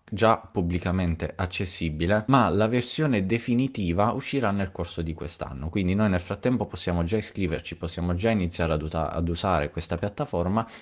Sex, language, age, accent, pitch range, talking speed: male, Italian, 30-49, native, 85-110 Hz, 150 wpm